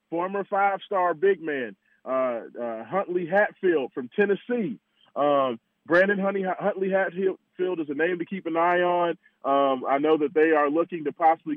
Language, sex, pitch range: English, male, 150-195 Hz